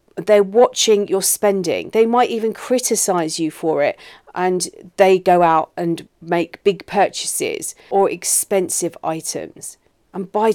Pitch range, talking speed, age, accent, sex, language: 180-225 Hz, 135 wpm, 40-59, British, female, English